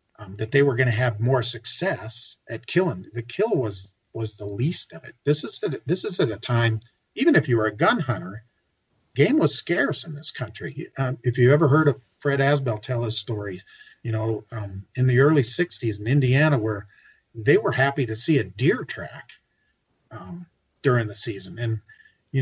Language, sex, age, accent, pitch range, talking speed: English, male, 50-69, American, 110-145 Hz, 200 wpm